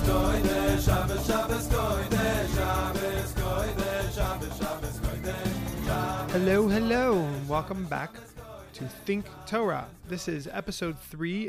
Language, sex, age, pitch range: English, male, 20-39, 140-170 Hz